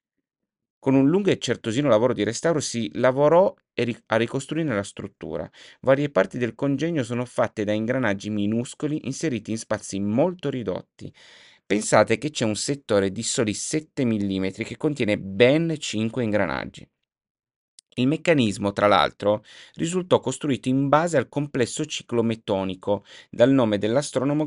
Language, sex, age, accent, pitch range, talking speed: Italian, male, 30-49, native, 105-140 Hz, 140 wpm